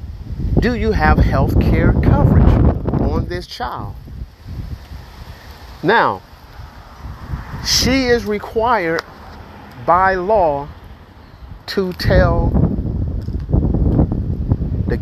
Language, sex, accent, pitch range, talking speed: English, male, American, 90-155 Hz, 70 wpm